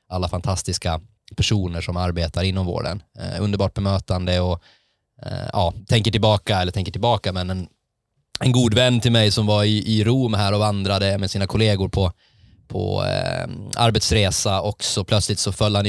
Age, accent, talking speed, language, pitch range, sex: 20-39, native, 175 wpm, Swedish, 95-110 Hz, male